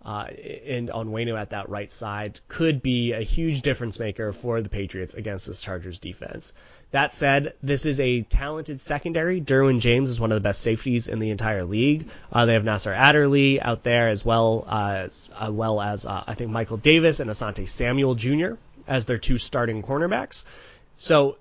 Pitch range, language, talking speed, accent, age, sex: 105-130 Hz, English, 190 wpm, American, 20-39, male